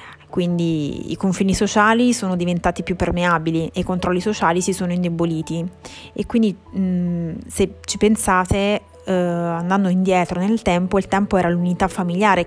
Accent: native